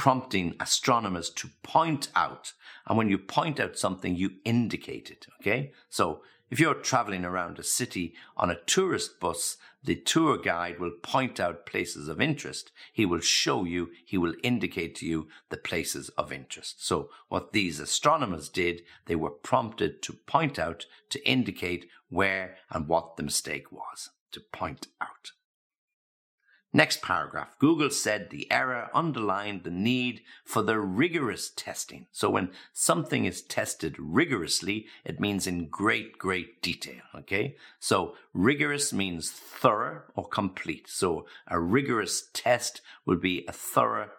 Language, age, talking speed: English, 50-69, 150 wpm